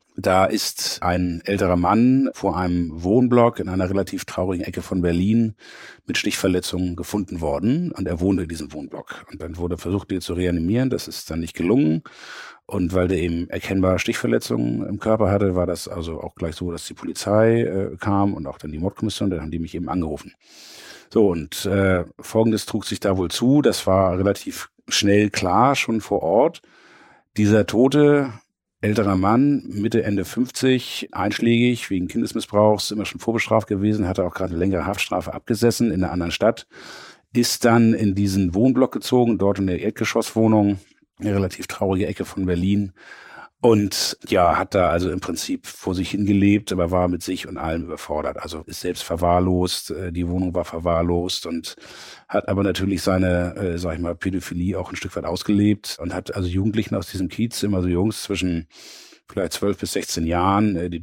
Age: 50-69